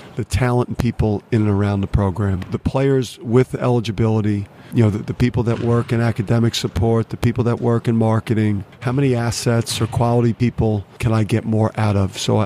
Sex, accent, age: male, American, 50-69